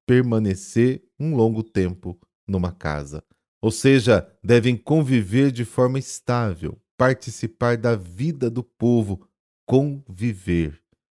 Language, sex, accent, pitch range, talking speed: Portuguese, male, Brazilian, 95-125 Hz, 100 wpm